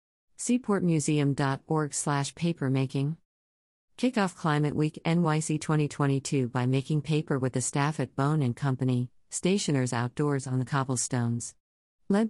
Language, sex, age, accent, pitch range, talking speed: English, female, 50-69, American, 130-160 Hz, 115 wpm